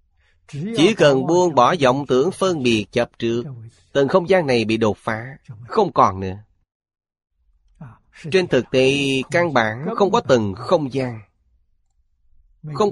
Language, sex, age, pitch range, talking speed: Vietnamese, male, 30-49, 90-145 Hz, 145 wpm